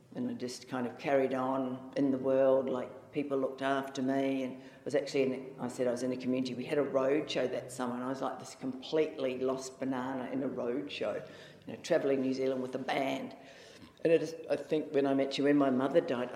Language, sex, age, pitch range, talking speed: English, female, 50-69, 130-145 Hz, 240 wpm